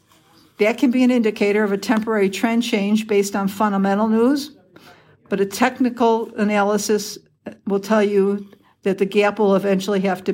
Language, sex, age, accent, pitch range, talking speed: English, female, 60-79, American, 195-225 Hz, 165 wpm